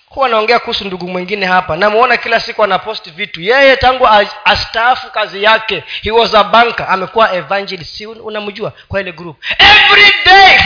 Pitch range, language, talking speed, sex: 185-275 Hz, Swahili, 165 wpm, male